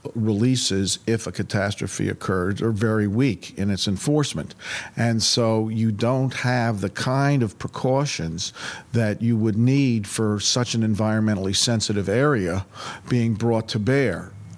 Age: 50-69